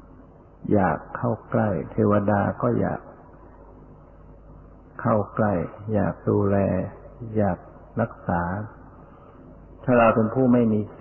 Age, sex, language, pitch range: 60-79, male, Thai, 100-115 Hz